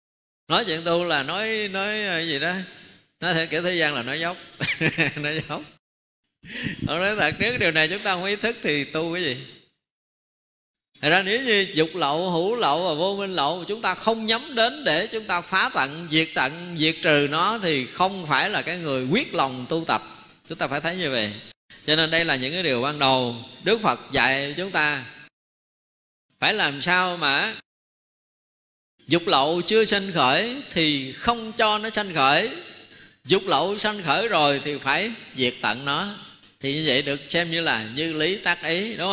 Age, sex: 20-39, male